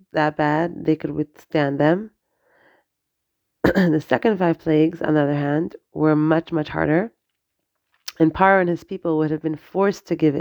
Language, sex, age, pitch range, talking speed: English, female, 30-49, 150-165 Hz, 165 wpm